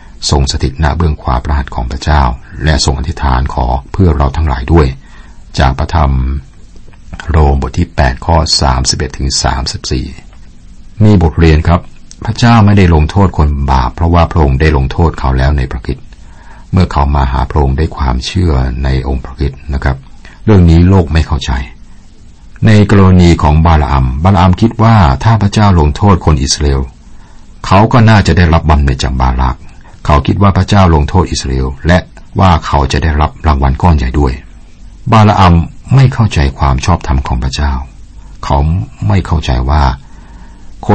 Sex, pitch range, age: male, 70-90 Hz, 60-79